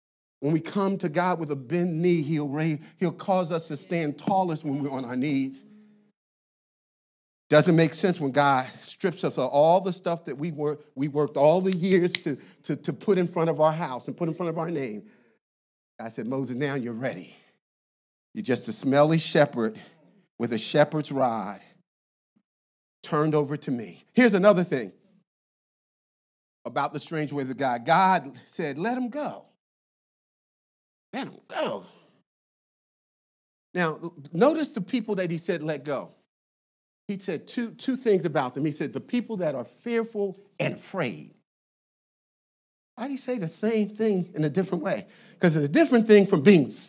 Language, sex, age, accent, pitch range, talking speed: English, male, 50-69, American, 150-220 Hz, 170 wpm